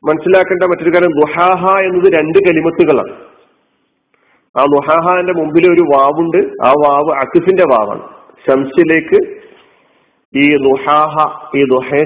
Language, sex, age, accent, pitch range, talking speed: Malayalam, male, 50-69, native, 150-220 Hz, 105 wpm